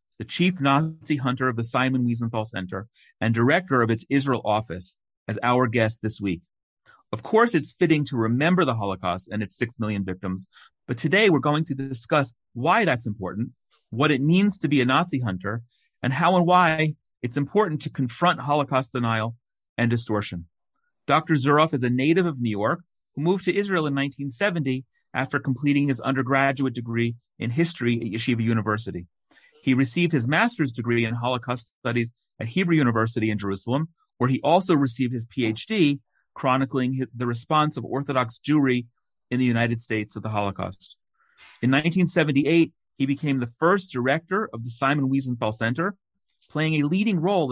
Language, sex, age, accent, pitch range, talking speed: English, male, 40-59, American, 115-150 Hz, 170 wpm